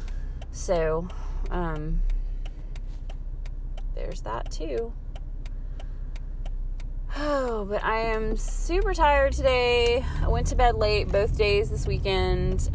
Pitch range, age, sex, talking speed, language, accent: 65-95 Hz, 20-39, female, 100 wpm, English, American